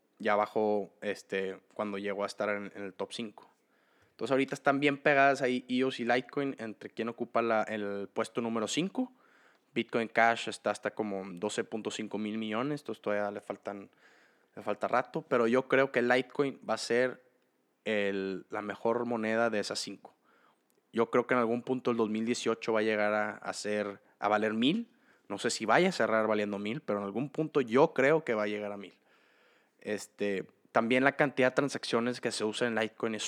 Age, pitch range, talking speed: 20-39, 105-120 Hz, 195 wpm